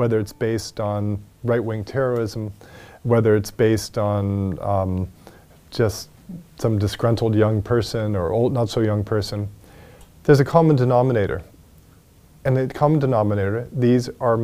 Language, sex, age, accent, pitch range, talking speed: English, male, 40-59, American, 105-140 Hz, 135 wpm